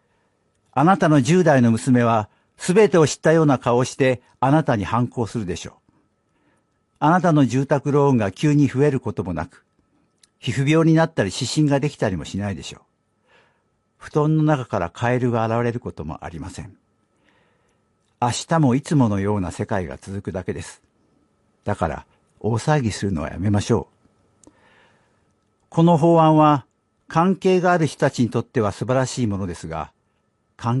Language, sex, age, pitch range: Japanese, male, 60-79, 100-145 Hz